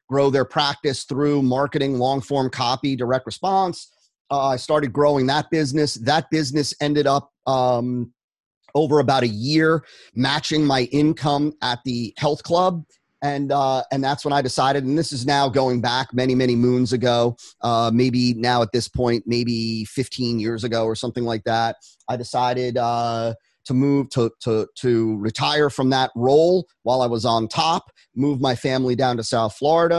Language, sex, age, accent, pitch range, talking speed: English, male, 30-49, American, 125-145 Hz, 175 wpm